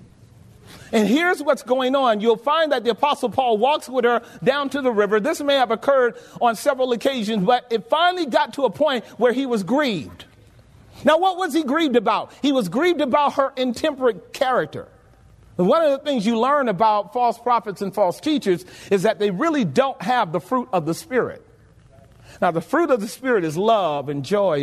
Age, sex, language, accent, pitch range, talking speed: 40-59, male, English, American, 185-265 Hz, 200 wpm